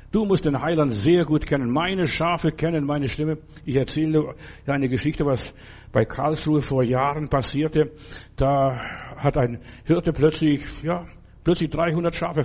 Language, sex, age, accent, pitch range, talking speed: German, male, 60-79, German, 130-160 Hz, 150 wpm